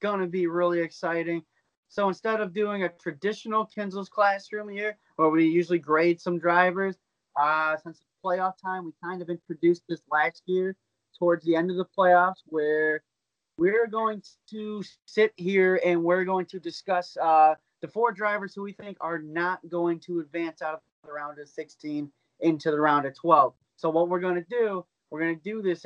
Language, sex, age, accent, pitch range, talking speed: English, male, 20-39, American, 155-185 Hz, 190 wpm